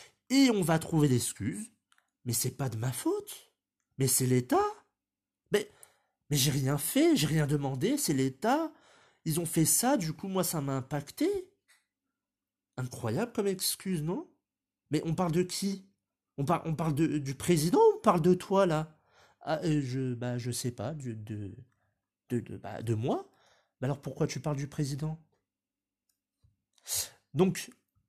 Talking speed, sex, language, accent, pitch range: 165 wpm, male, French, French, 120-170 Hz